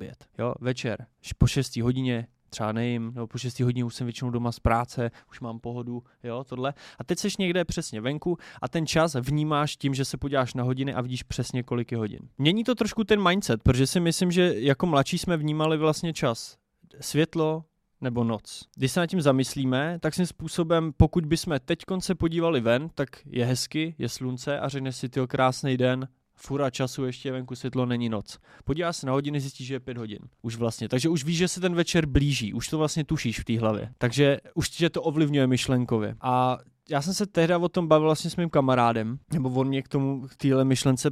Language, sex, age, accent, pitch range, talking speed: Czech, male, 20-39, native, 125-155 Hz, 210 wpm